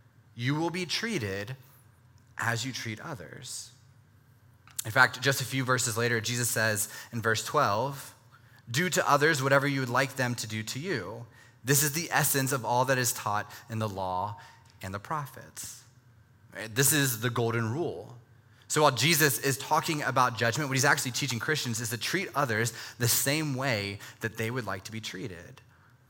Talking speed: 180 wpm